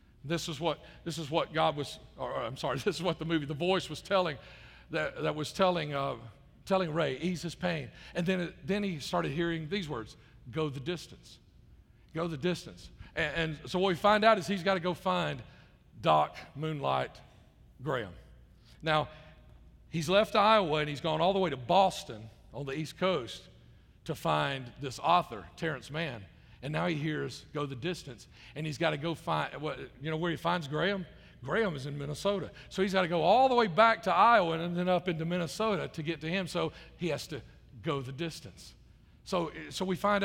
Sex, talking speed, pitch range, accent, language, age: male, 205 wpm, 140-185 Hz, American, English, 50-69